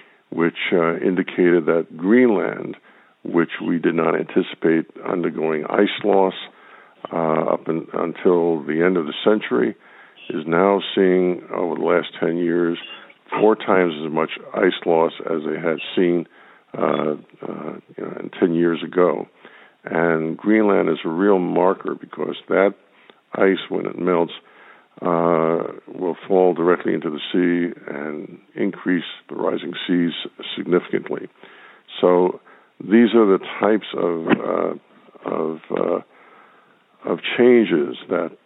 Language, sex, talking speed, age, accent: English, male, 130 wpm, 60-79, American